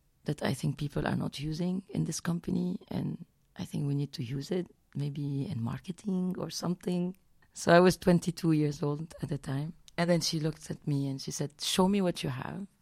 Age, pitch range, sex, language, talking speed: 30-49, 140-175 Hz, female, English, 215 wpm